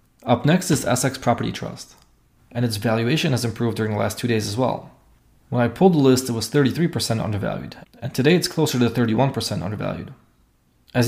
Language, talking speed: English, 190 wpm